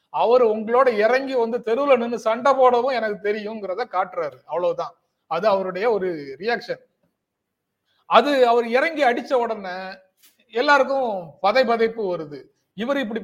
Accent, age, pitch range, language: native, 30-49, 195-255 Hz, Tamil